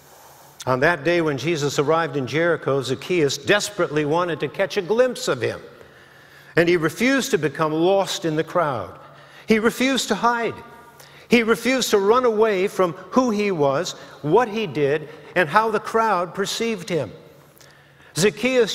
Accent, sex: American, male